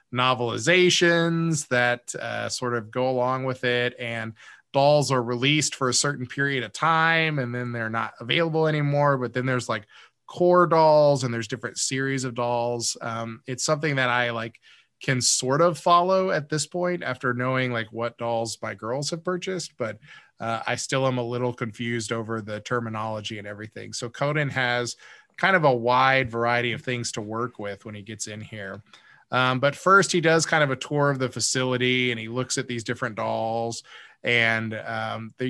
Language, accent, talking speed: English, American, 190 wpm